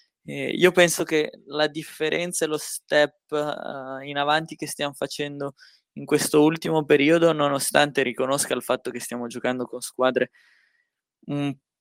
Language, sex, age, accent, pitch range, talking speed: Italian, male, 20-39, native, 125-155 Hz, 135 wpm